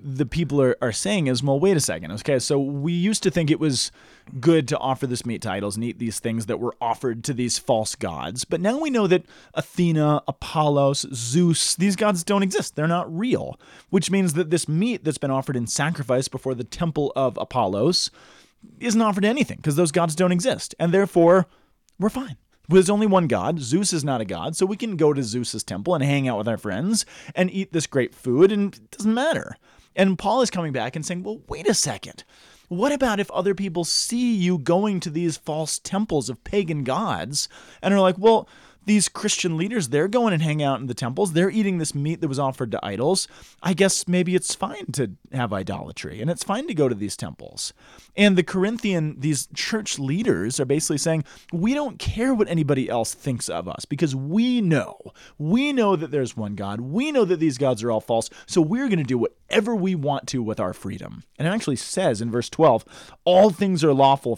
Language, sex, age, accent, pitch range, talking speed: English, male, 30-49, American, 135-195 Hz, 220 wpm